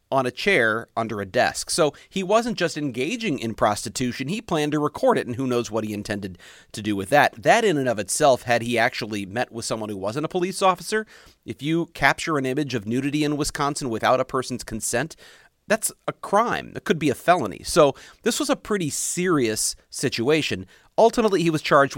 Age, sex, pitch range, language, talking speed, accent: 40-59, male, 115-160 Hz, English, 210 wpm, American